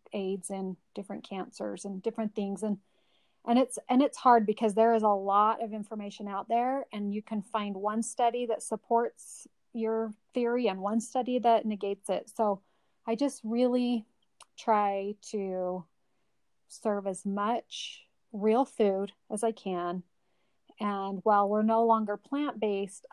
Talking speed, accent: 150 wpm, American